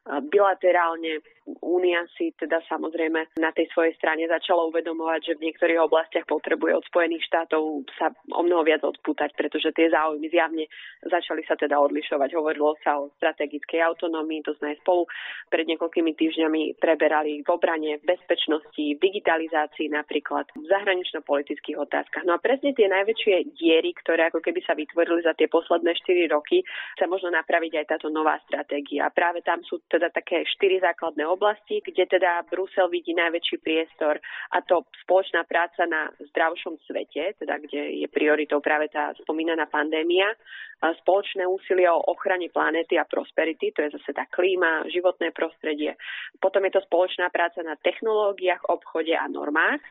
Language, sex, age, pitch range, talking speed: Slovak, female, 20-39, 155-180 Hz, 160 wpm